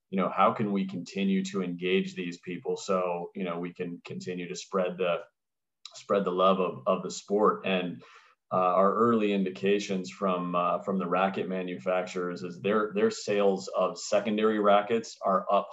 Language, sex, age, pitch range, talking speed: English, male, 30-49, 90-100 Hz, 175 wpm